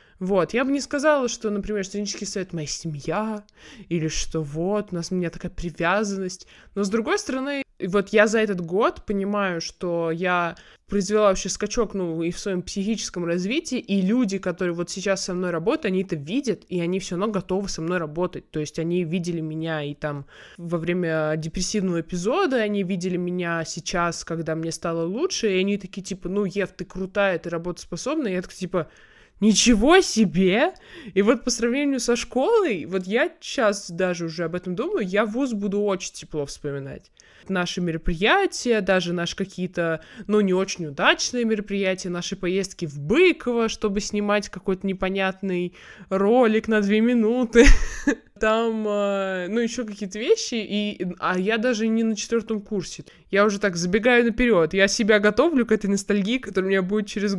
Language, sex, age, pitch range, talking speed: Russian, male, 20-39, 175-220 Hz, 175 wpm